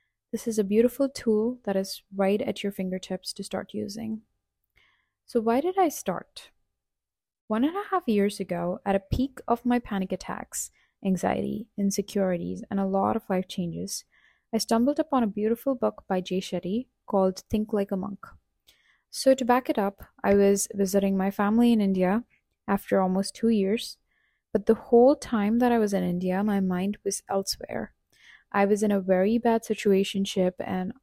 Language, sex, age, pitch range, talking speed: English, female, 20-39, 195-230 Hz, 175 wpm